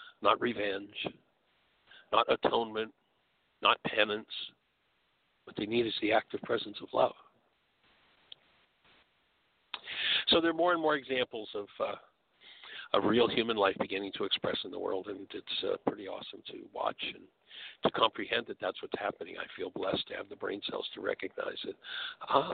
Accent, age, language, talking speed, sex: American, 60-79, English, 160 wpm, male